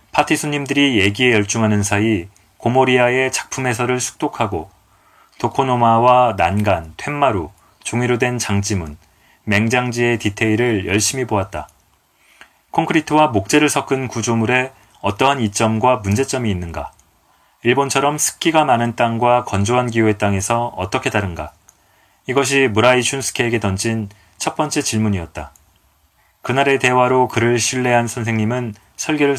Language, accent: Korean, native